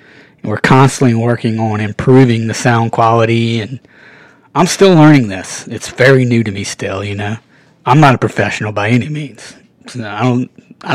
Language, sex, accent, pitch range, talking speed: English, male, American, 110-135 Hz, 170 wpm